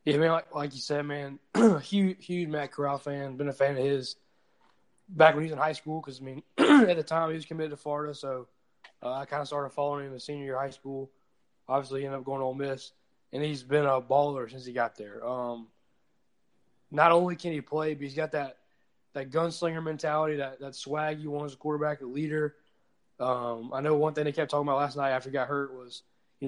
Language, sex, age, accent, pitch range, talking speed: English, male, 20-39, American, 135-155 Hz, 240 wpm